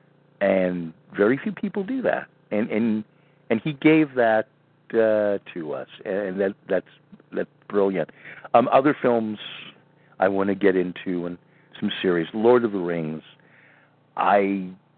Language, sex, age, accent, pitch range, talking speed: English, male, 50-69, American, 90-125 Hz, 150 wpm